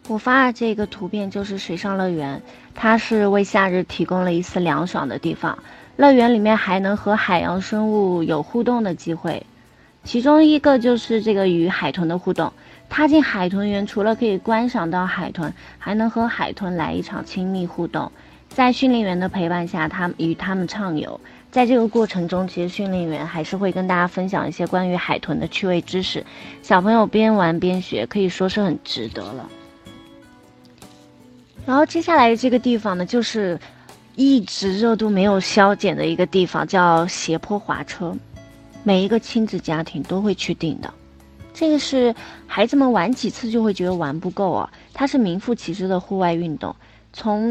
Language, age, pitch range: Chinese, 20-39, 175-225 Hz